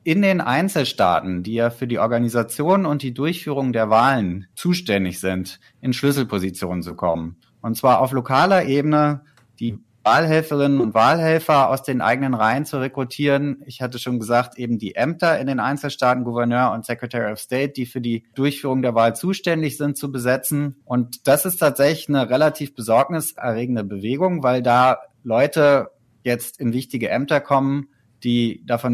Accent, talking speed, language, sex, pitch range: German, 160 wpm, German, male, 115-140 Hz